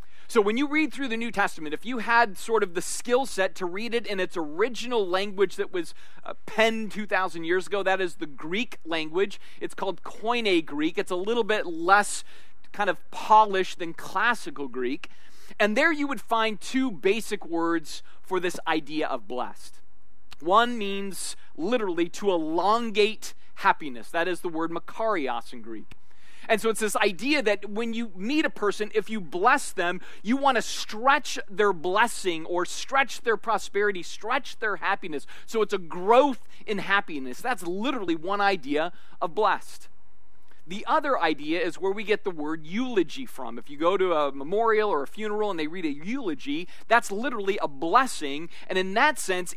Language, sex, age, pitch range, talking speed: English, male, 30-49, 175-235 Hz, 180 wpm